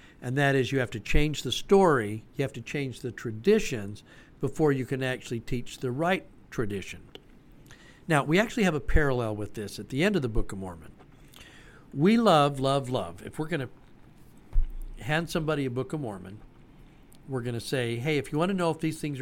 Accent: American